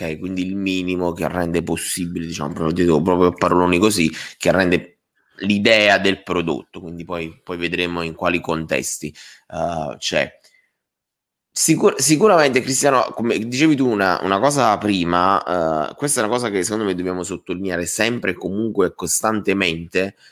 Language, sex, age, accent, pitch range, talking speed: Italian, male, 20-39, native, 85-105 Hz, 145 wpm